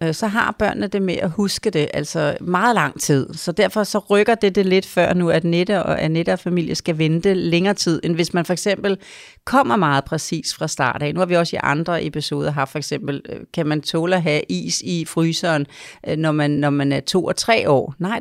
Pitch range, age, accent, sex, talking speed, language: 155-200 Hz, 40-59, native, female, 220 wpm, Danish